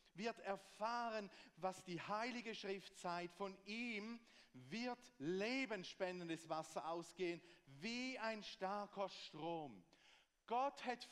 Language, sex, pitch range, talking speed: English, male, 150-220 Hz, 105 wpm